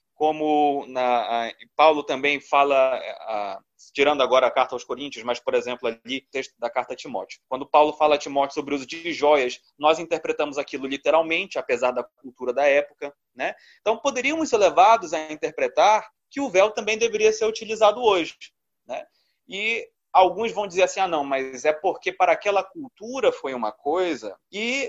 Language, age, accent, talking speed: Portuguese, 20-39, Brazilian, 175 wpm